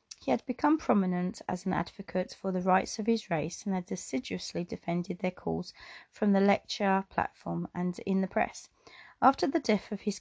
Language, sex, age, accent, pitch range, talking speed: English, female, 40-59, British, 185-240 Hz, 190 wpm